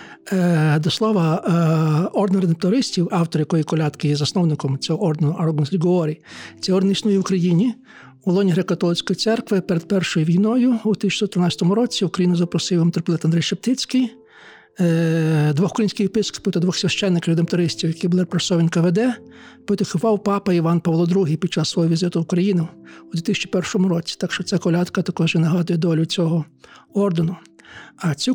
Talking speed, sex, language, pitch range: 150 wpm, male, Ukrainian, 170-200 Hz